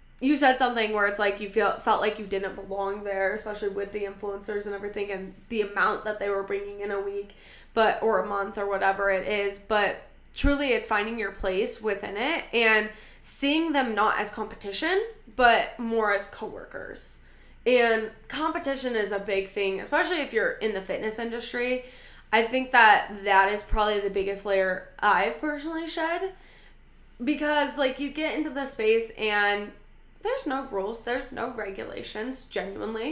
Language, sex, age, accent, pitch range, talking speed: English, female, 10-29, American, 205-260 Hz, 175 wpm